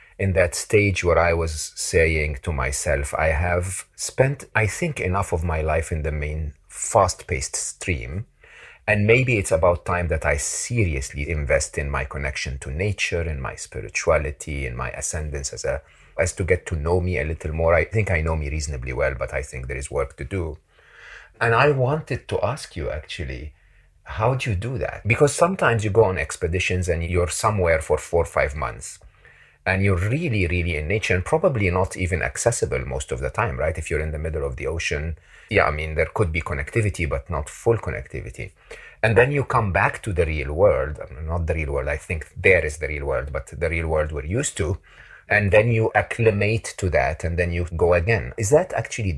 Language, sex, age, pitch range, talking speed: English, male, 40-59, 80-105 Hz, 210 wpm